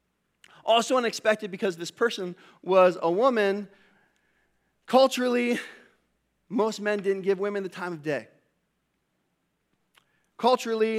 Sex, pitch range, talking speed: male, 175-225 Hz, 105 wpm